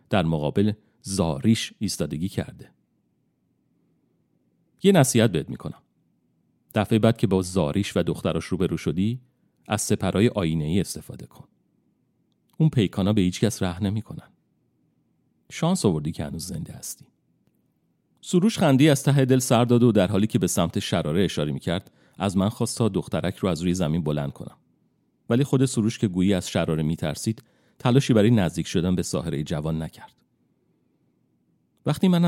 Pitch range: 90-120 Hz